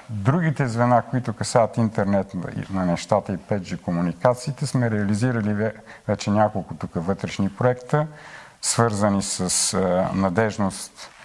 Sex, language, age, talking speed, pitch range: male, Bulgarian, 50-69, 105 wpm, 100-130 Hz